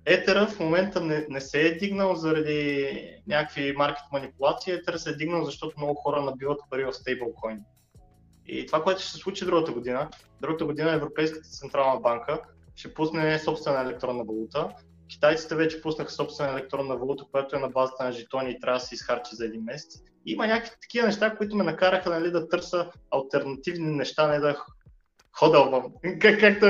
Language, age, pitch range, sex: Bulgarian, 20-39, 135-180 Hz, male